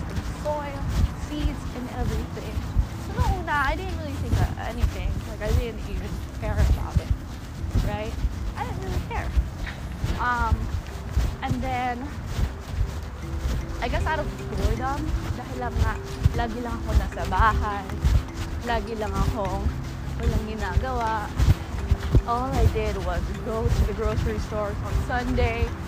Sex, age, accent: female, 20-39, Filipino